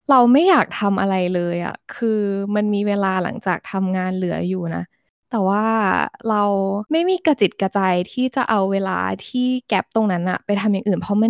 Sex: female